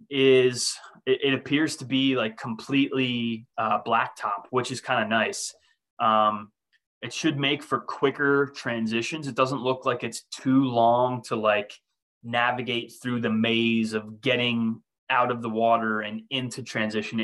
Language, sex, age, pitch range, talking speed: English, male, 20-39, 110-130 Hz, 150 wpm